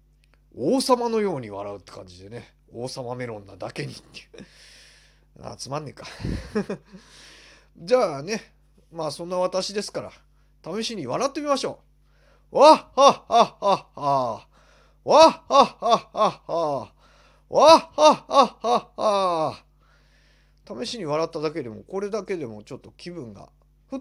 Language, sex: Japanese, male